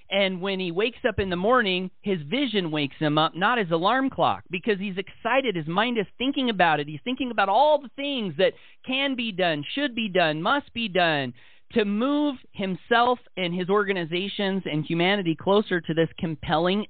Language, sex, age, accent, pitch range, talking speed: English, male, 40-59, American, 165-220 Hz, 190 wpm